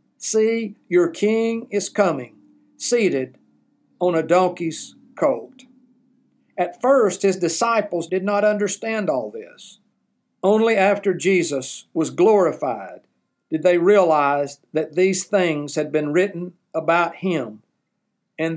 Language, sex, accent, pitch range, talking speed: English, male, American, 160-205 Hz, 115 wpm